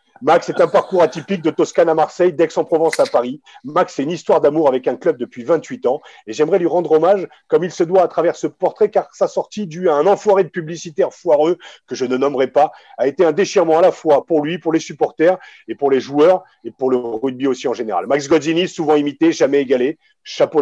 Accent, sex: French, male